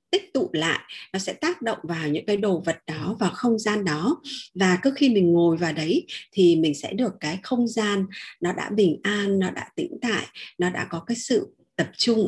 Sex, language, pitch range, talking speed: female, Vietnamese, 180-250 Hz, 225 wpm